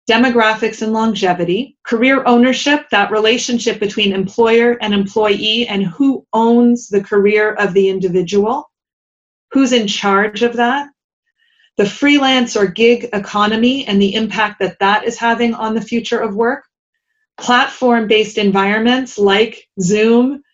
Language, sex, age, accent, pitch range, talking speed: English, female, 30-49, American, 200-245 Hz, 130 wpm